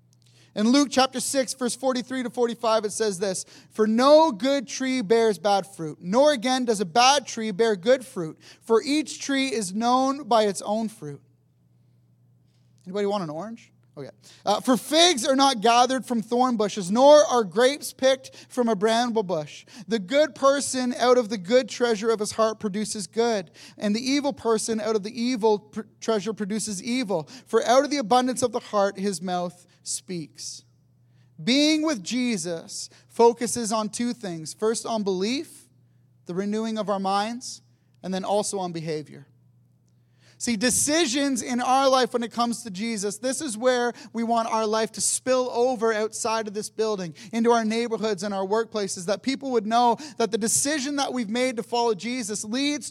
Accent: American